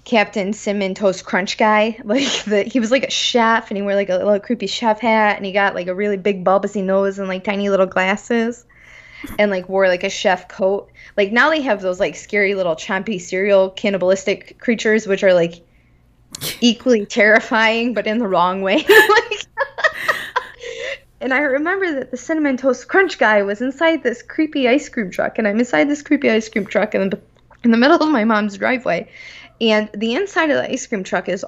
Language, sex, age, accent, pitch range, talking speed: English, female, 20-39, American, 185-225 Hz, 205 wpm